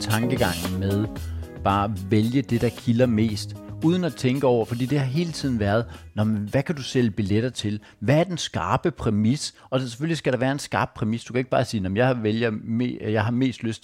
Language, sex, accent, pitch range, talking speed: Danish, male, native, 105-135 Hz, 215 wpm